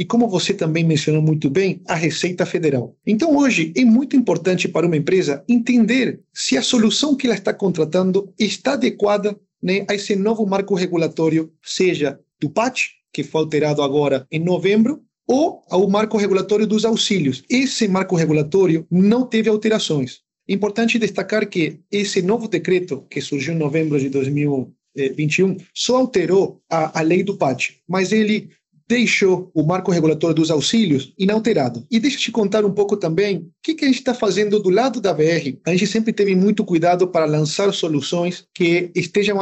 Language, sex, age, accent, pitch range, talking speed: Portuguese, male, 40-59, Brazilian, 160-215 Hz, 170 wpm